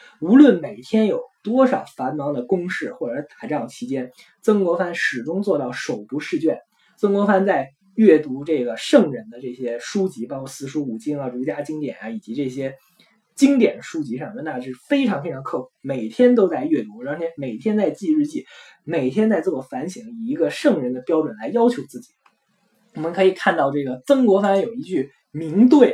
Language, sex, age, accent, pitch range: Chinese, male, 20-39, native, 155-225 Hz